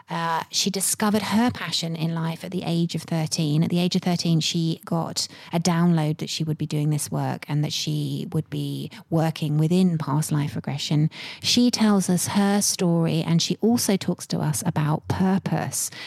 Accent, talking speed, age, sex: British, 190 wpm, 30-49, female